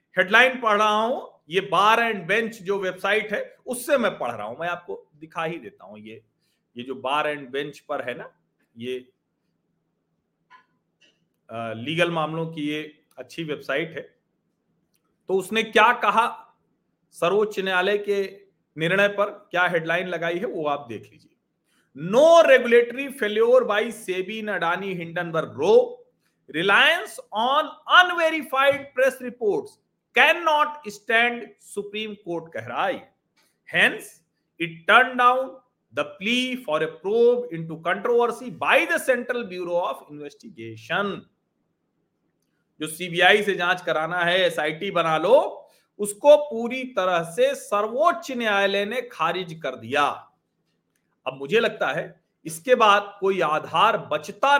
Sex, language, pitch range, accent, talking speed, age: male, Hindi, 165-240 Hz, native, 130 wpm, 40-59